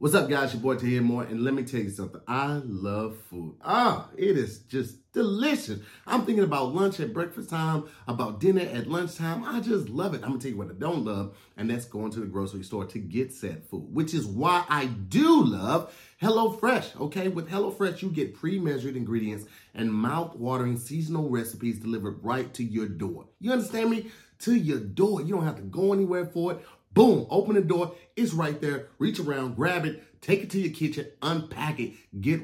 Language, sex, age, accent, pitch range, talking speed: English, male, 30-49, American, 120-180 Hz, 210 wpm